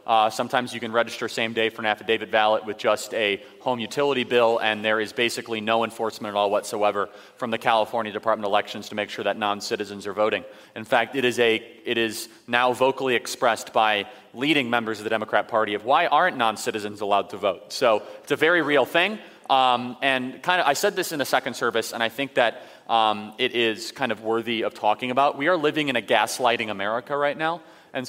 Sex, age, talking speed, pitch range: male, 30-49, 220 wpm, 110-125 Hz